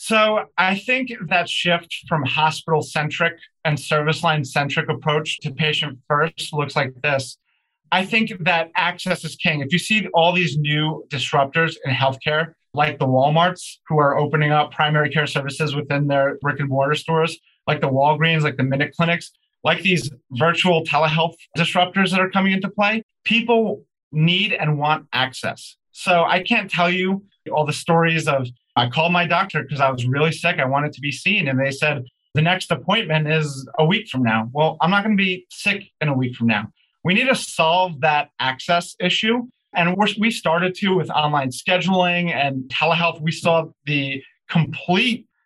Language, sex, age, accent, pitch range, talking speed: English, male, 30-49, American, 145-180 Hz, 180 wpm